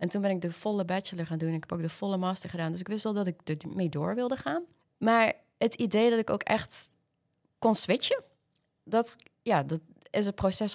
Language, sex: Dutch, female